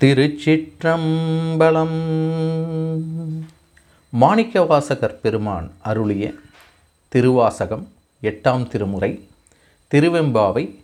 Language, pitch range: Tamil, 110-160 Hz